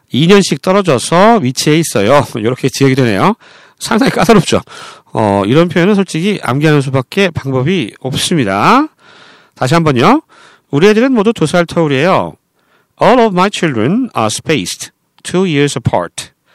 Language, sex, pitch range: Korean, male, 135-205 Hz